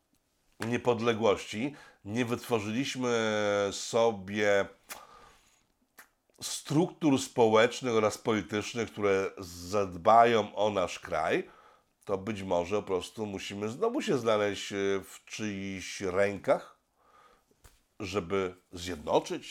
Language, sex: Polish, male